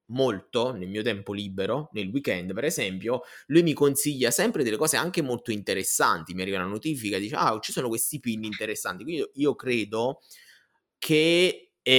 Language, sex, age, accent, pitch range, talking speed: Italian, male, 20-39, native, 105-130 Hz, 165 wpm